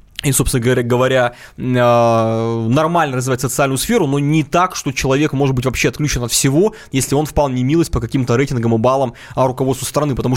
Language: Russian